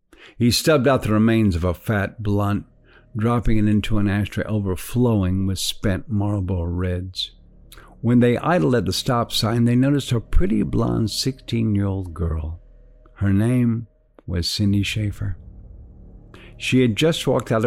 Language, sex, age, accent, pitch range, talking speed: English, male, 50-69, American, 90-110 Hz, 145 wpm